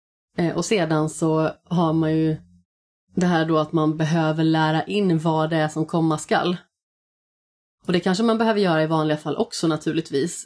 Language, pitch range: Swedish, 155-175 Hz